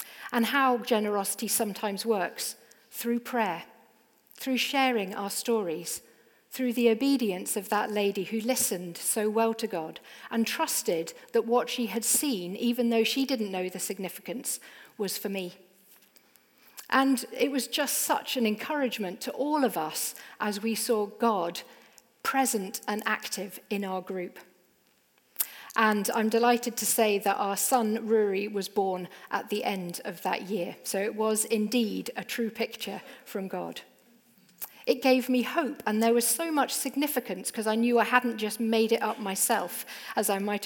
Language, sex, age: English, female, 50-69